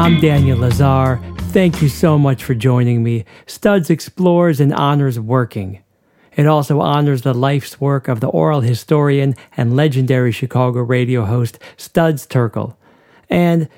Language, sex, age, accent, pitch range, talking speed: English, male, 40-59, American, 120-155 Hz, 145 wpm